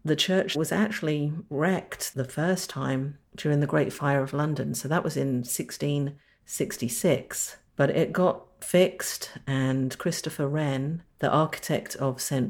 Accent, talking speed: British, 145 wpm